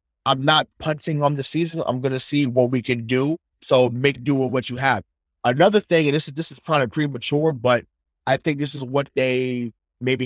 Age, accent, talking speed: 20-39, American, 230 wpm